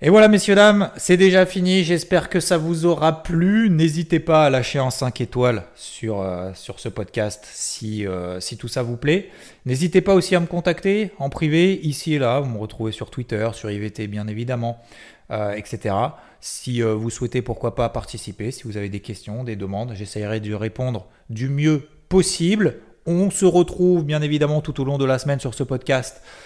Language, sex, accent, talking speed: French, male, French, 200 wpm